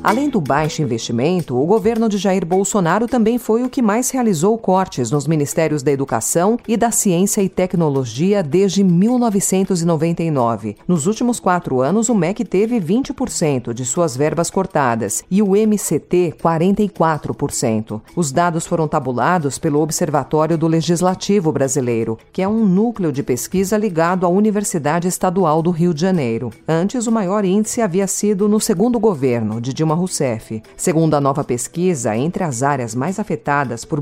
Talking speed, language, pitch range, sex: 155 wpm, Portuguese, 140-210 Hz, female